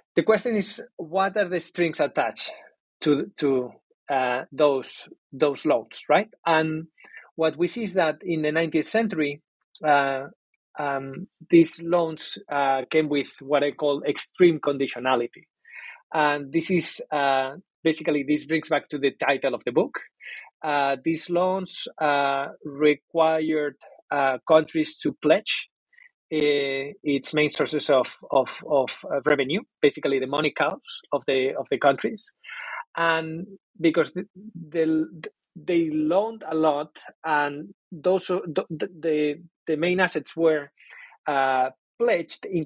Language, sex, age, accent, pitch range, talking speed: English, male, 30-49, Spanish, 145-170 Hz, 135 wpm